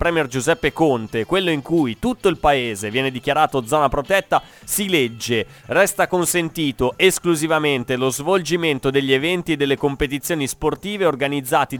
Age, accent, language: 30-49, native, Italian